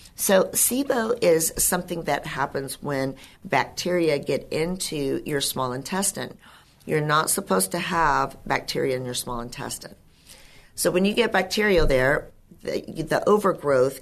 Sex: female